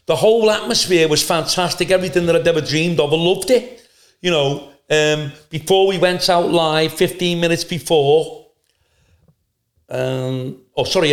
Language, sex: English, male